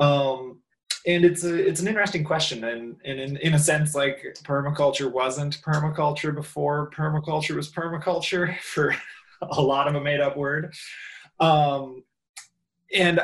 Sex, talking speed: male, 140 wpm